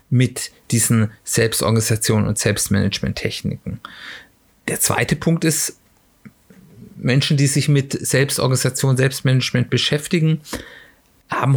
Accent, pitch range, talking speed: German, 120-145 Hz, 90 wpm